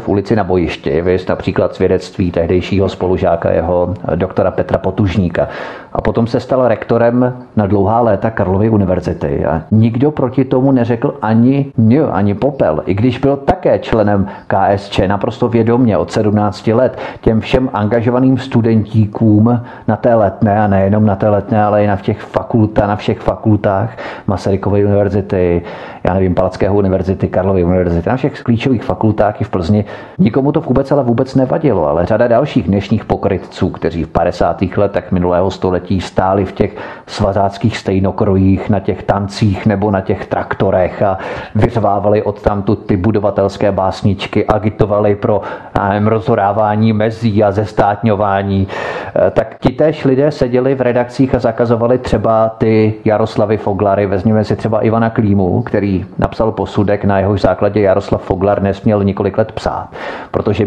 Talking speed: 145 wpm